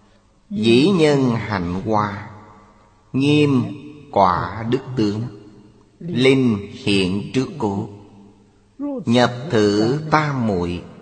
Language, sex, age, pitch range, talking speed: Vietnamese, male, 30-49, 95-125 Hz, 85 wpm